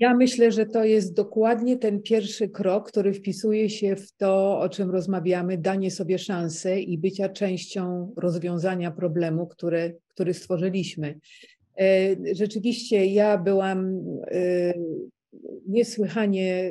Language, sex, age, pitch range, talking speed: English, female, 40-59, 175-205 Hz, 115 wpm